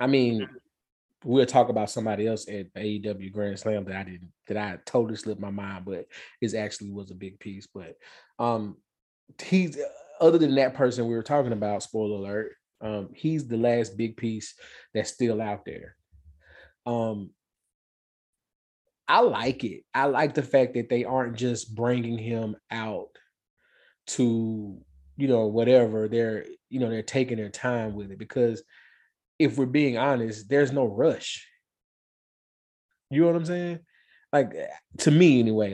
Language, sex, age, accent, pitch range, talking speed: English, male, 20-39, American, 105-130 Hz, 160 wpm